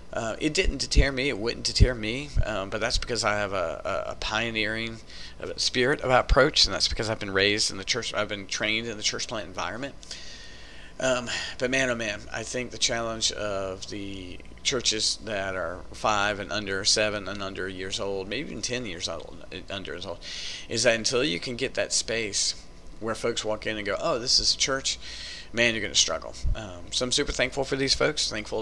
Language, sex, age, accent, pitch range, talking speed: English, male, 40-59, American, 95-120 Hz, 210 wpm